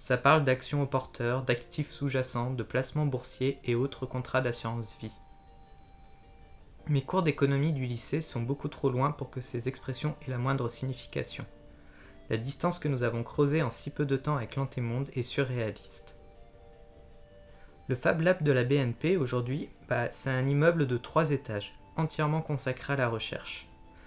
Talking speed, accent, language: 160 wpm, French, French